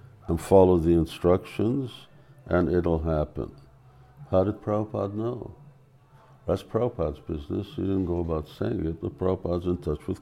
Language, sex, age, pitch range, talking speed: English, male, 60-79, 80-105 Hz, 145 wpm